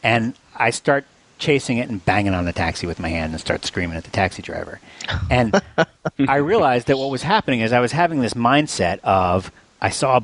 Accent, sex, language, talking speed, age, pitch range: American, male, English, 215 wpm, 40-59, 90-135 Hz